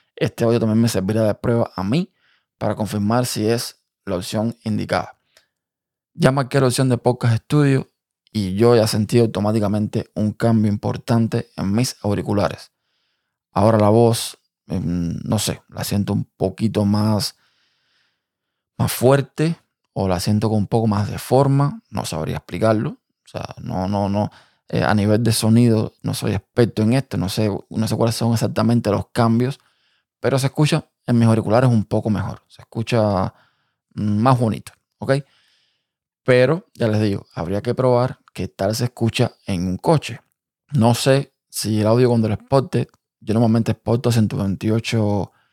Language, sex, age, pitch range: Spanish, male, 20-39, 105-120 Hz